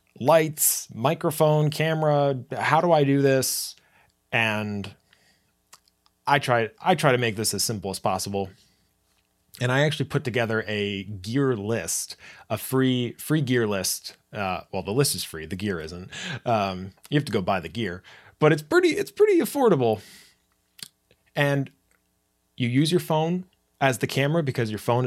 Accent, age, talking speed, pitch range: American, 30-49, 160 wpm, 105-145 Hz